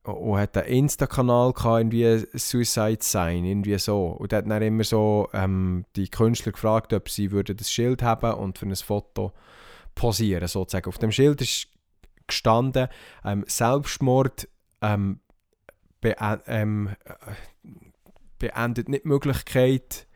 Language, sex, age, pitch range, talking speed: German, male, 20-39, 105-130 Hz, 130 wpm